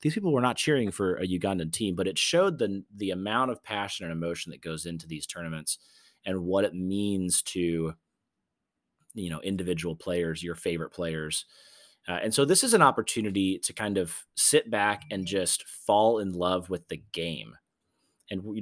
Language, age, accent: English, 30-49, American